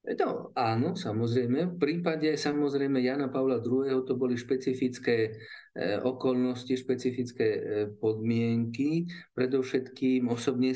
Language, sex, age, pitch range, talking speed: Slovak, male, 50-69, 110-130 Hz, 95 wpm